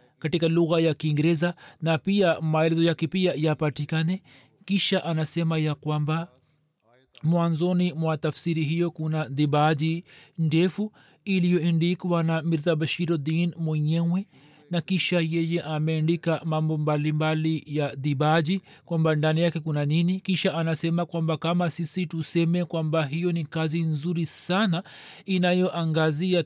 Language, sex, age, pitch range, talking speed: Swahili, male, 40-59, 155-180 Hz, 120 wpm